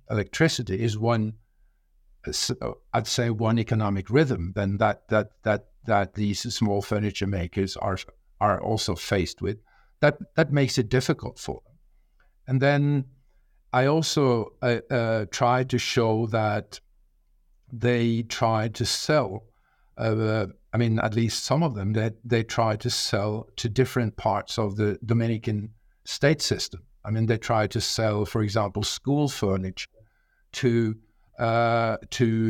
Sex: male